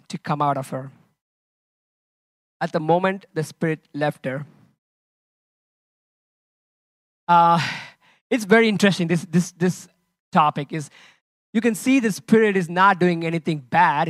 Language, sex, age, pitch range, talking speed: English, male, 20-39, 160-195 Hz, 130 wpm